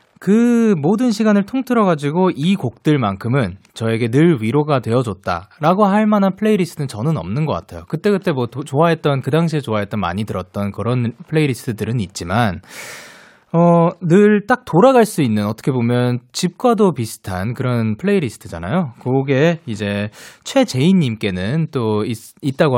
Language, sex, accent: Korean, male, native